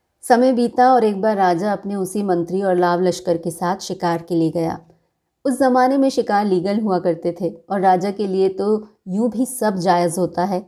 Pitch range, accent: 175-225 Hz, native